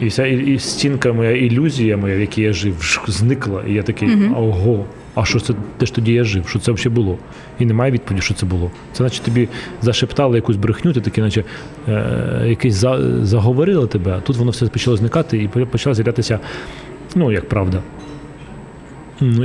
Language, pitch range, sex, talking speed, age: Ukrainian, 110-135 Hz, male, 195 wpm, 30-49